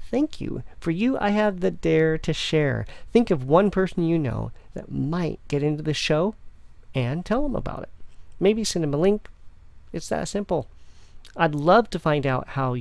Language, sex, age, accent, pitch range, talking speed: English, male, 40-59, American, 130-190 Hz, 190 wpm